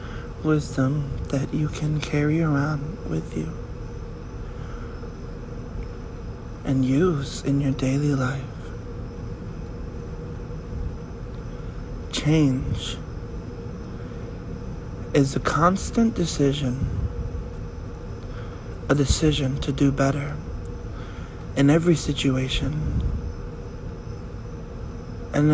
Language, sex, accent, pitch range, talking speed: English, male, American, 115-140 Hz, 65 wpm